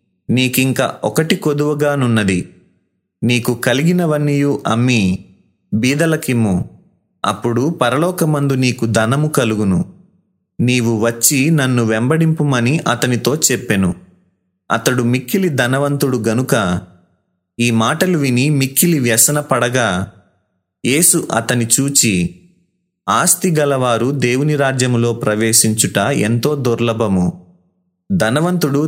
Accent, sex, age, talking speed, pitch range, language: native, male, 30-49, 75 wpm, 110-145 Hz, Telugu